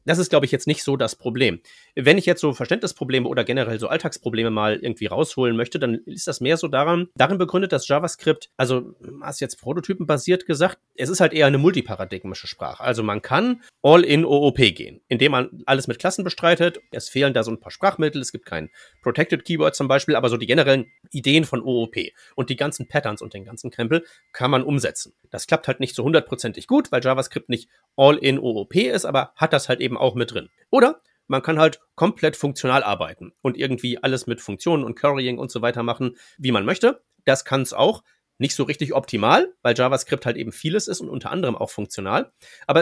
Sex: male